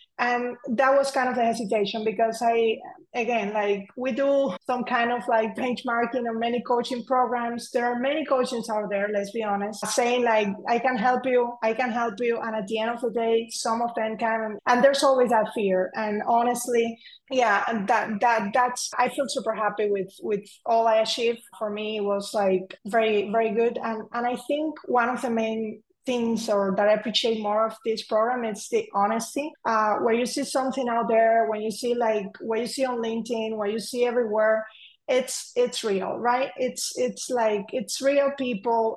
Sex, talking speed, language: female, 200 wpm, English